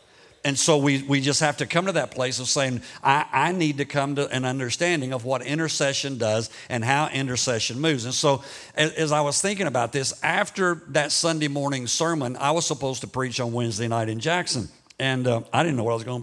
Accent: American